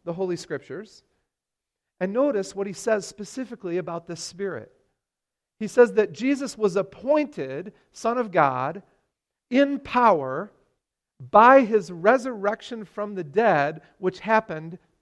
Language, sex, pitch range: English, male, 150-220 Hz